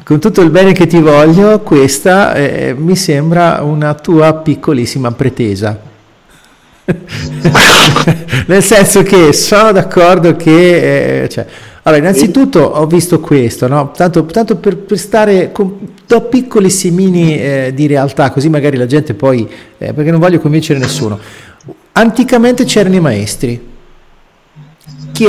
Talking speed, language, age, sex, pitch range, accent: 130 wpm, Italian, 50-69, male, 135-180 Hz, native